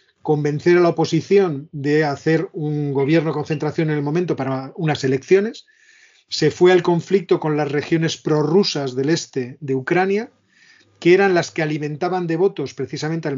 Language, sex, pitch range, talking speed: Spanish, male, 140-170 Hz, 165 wpm